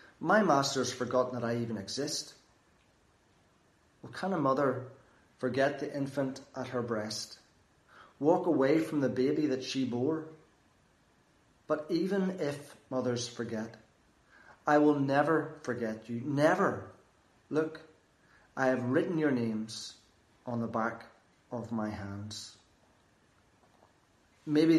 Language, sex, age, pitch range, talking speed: English, male, 30-49, 115-140 Hz, 120 wpm